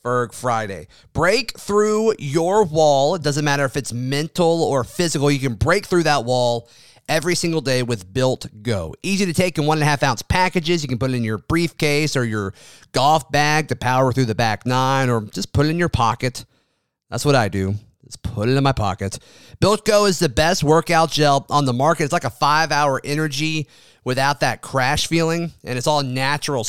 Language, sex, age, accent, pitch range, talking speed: English, male, 30-49, American, 125-165 Hz, 210 wpm